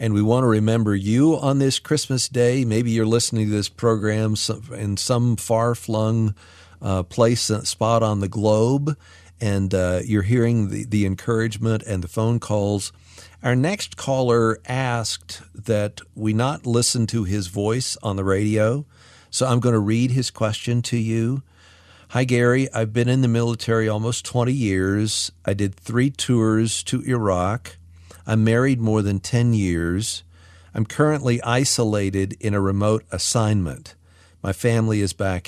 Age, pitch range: 50-69, 95-120 Hz